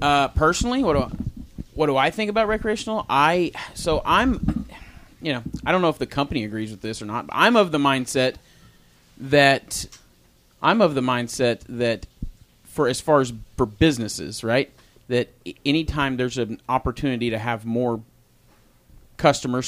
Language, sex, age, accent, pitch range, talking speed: English, male, 30-49, American, 115-145 Hz, 165 wpm